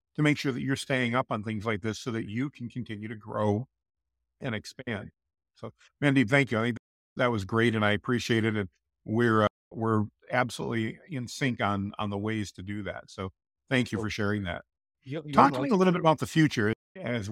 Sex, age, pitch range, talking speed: male, 50-69, 105-135 Hz, 220 wpm